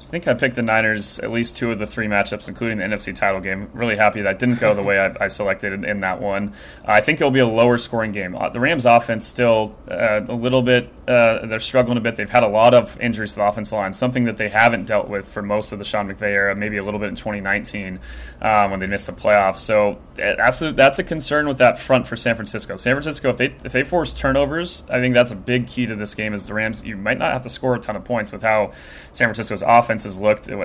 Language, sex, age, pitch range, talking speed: English, male, 20-39, 105-120 Hz, 265 wpm